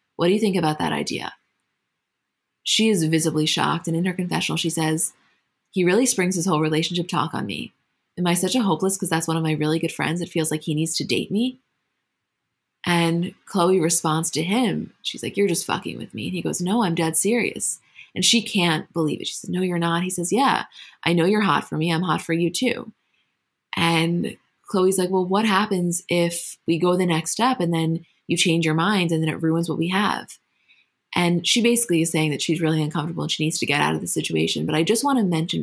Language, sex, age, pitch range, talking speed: English, female, 20-39, 160-185 Hz, 235 wpm